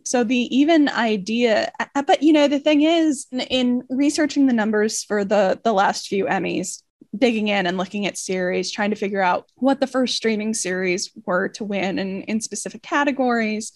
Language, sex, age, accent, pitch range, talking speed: English, female, 10-29, American, 215-265 Hz, 185 wpm